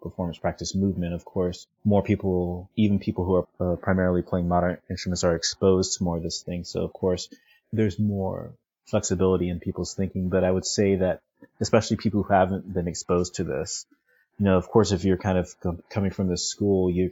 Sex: male